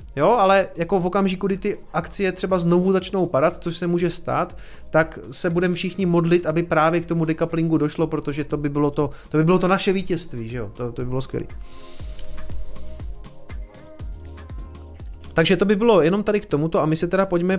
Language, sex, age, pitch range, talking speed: Czech, male, 30-49, 130-180 Hz, 200 wpm